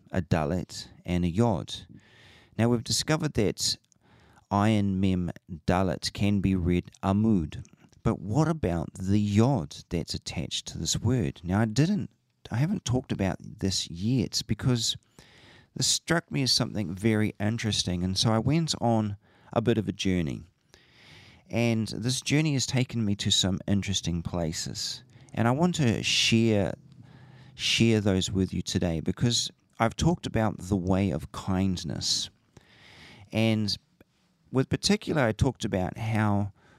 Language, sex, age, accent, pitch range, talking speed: English, male, 40-59, Australian, 95-125 Hz, 145 wpm